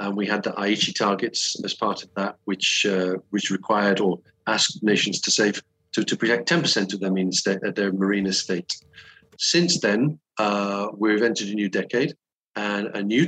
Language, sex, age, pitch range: English, male, 40-59, 100-125 Hz